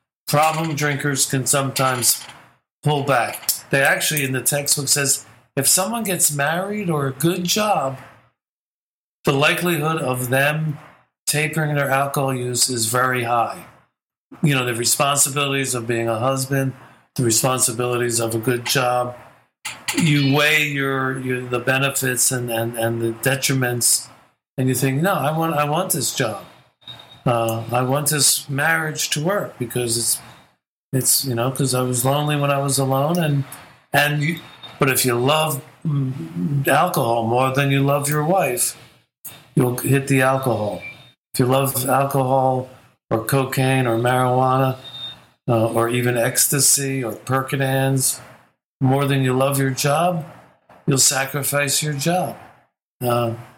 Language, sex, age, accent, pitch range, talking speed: English, male, 50-69, American, 125-145 Hz, 145 wpm